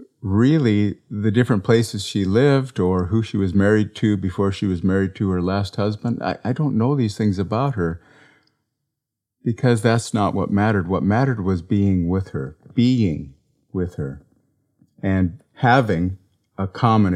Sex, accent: male, American